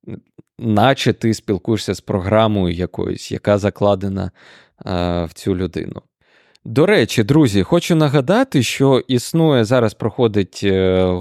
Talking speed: 105 wpm